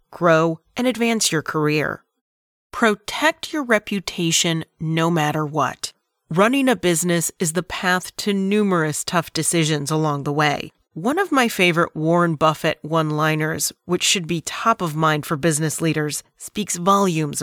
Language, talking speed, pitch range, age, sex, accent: English, 145 wpm, 155-200 Hz, 30-49, female, American